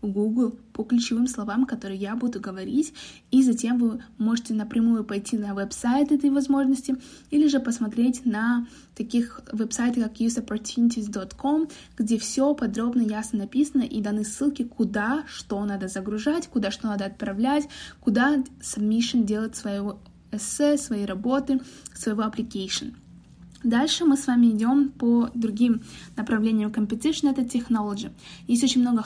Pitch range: 215-255 Hz